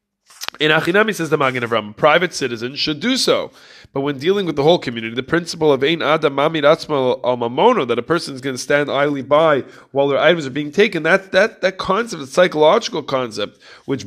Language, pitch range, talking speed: English, 135-170 Hz, 205 wpm